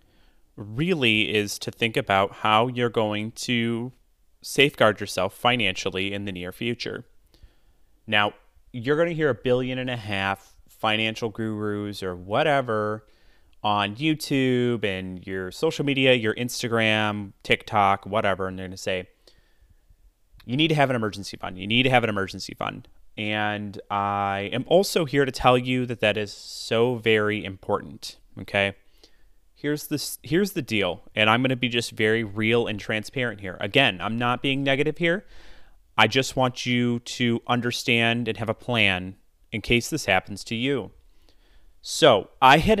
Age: 30-49